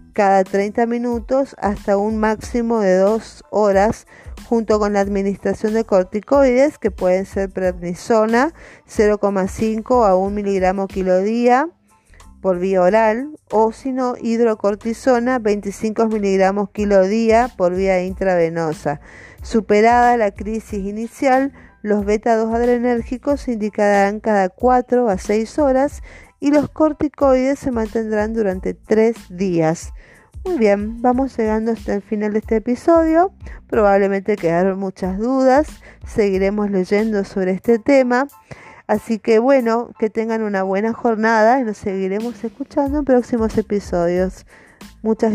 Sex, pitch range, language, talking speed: female, 190-235 Hz, Spanish, 125 wpm